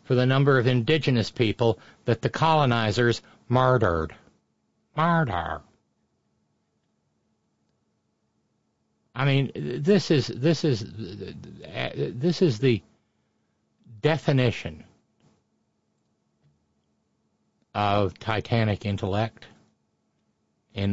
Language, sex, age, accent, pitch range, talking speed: English, male, 60-79, American, 110-145 Hz, 70 wpm